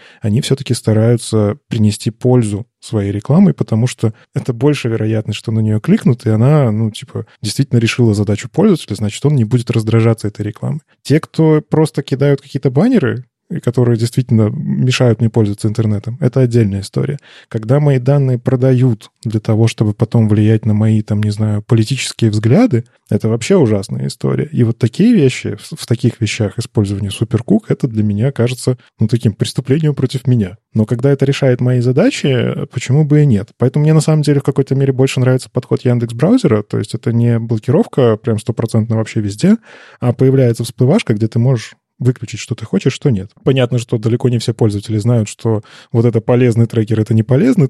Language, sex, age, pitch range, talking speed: Russian, male, 20-39, 110-135 Hz, 180 wpm